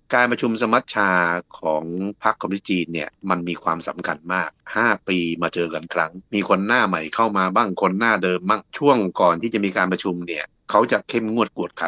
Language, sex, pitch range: Thai, male, 90-115 Hz